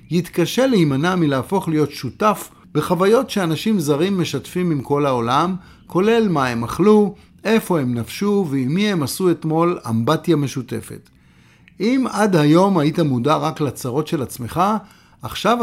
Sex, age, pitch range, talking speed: male, 50-69, 130-185 Hz, 140 wpm